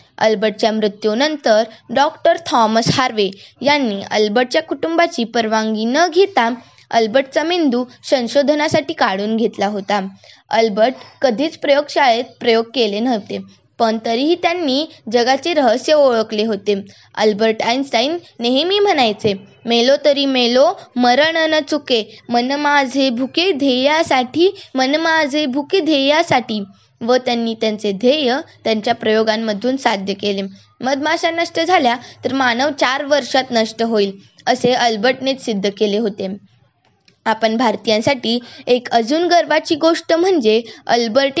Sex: female